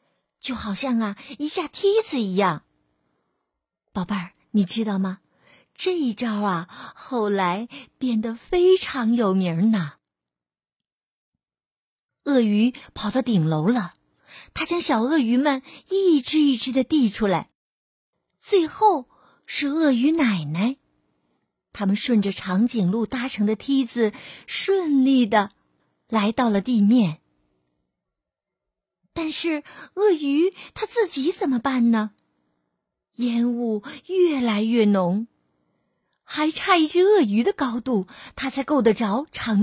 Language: Chinese